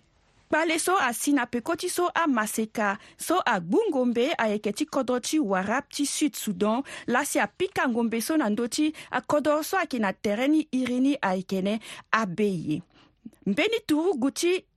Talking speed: 125 wpm